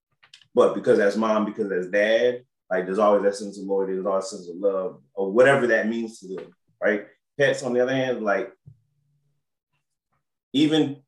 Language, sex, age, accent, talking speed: English, male, 30-49, American, 185 wpm